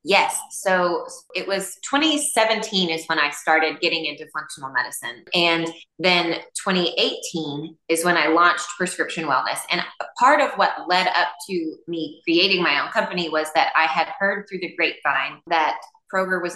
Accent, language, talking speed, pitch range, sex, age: American, English, 165 wpm, 160-190 Hz, female, 20-39